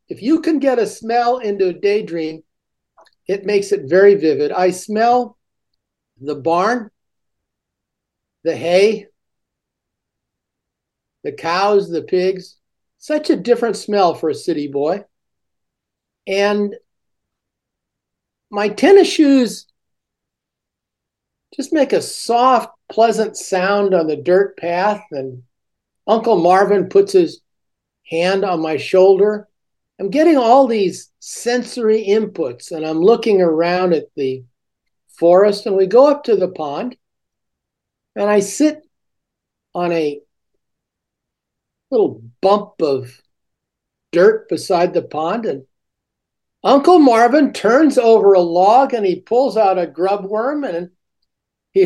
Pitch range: 175-250 Hz